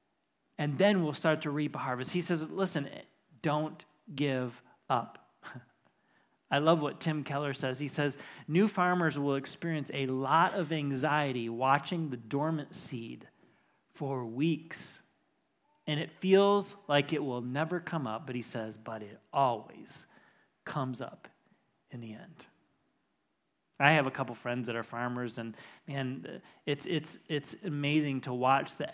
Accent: American